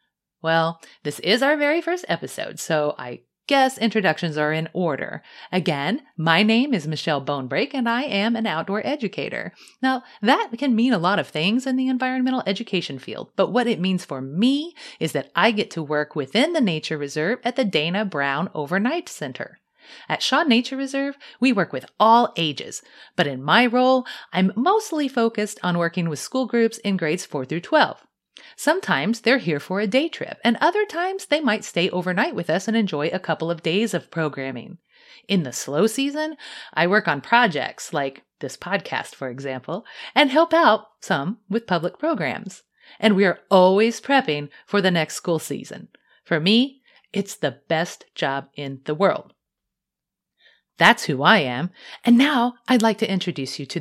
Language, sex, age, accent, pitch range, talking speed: English, female, 30-49, American, 160-245 Hz, 180 wpm